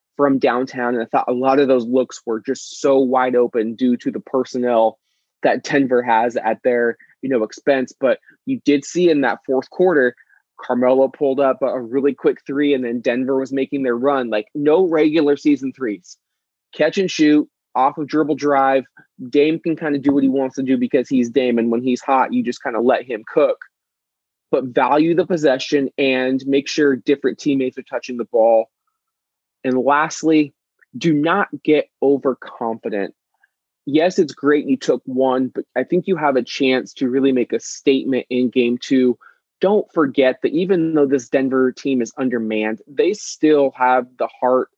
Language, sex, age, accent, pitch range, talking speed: English, male, 20-39, American, 125-150 Hz, 190 wpm